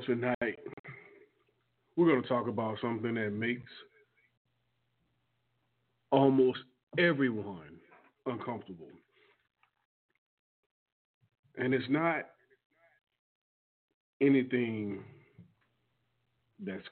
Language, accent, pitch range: English, American, 115-130 Hz